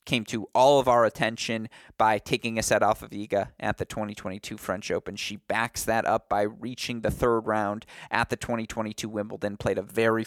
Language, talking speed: English, 200 wpm